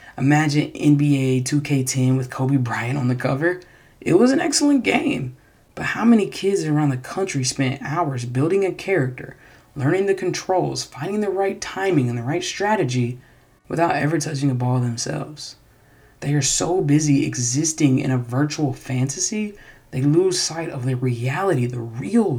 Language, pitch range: English, 125-165 Hz